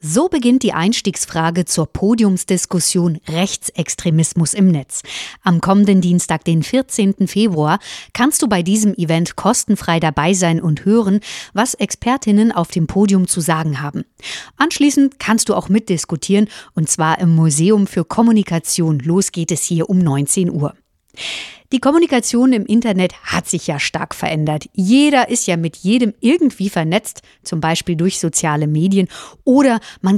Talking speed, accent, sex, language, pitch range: 145 wpm, German, female, German, 165-220 Hz